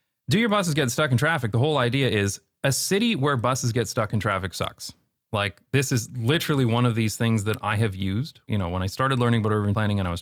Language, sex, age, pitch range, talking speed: English, male, 30-49, 100-130 Hz, 260 wpm